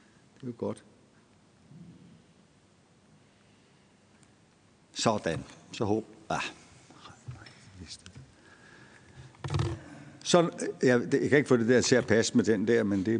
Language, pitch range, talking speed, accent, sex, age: Danish, 115-145 Hz, 105 wpm, native, male, 60-79